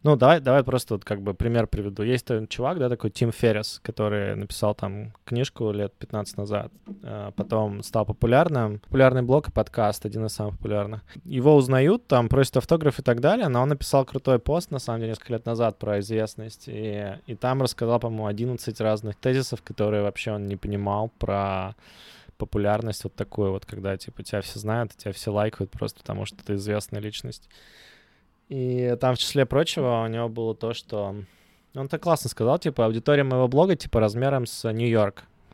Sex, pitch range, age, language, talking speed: male, 105-125 Hz, 20-39, Russian, 185 wpm